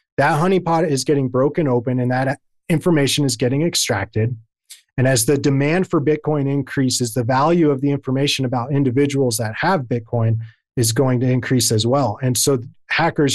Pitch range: 120-140 Hz